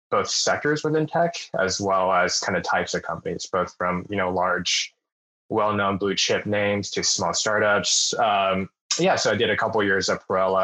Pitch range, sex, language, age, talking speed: 90-110 Hz, male, English, 20-39, 195 wpm